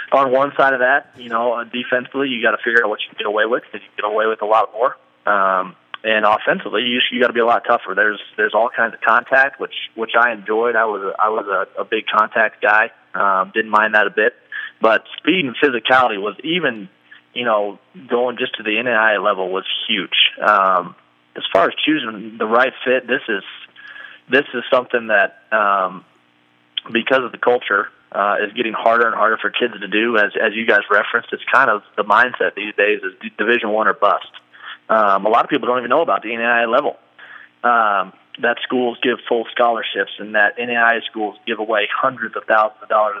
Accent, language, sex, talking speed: American, English, male, 215 wpm